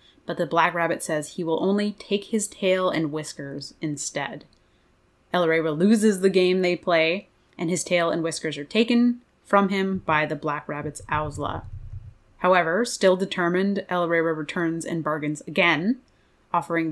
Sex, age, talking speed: female, 20-39, 155 wpm